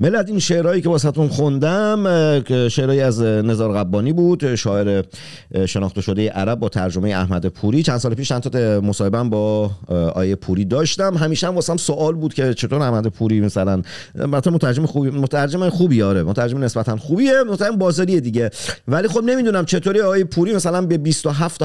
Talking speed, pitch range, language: 165 wpm, 100-160 Hz, Persian